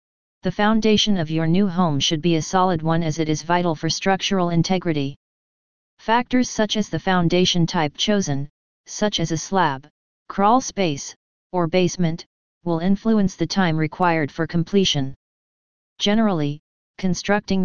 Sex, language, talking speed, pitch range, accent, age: female, English, 145 wpm, 165-195 Hz, American, 30-49